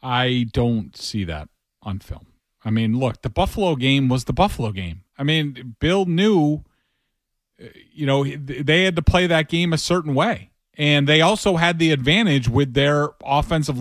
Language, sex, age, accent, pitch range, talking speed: English, male, 40-59, American, 135-175 Hz, 175 wpm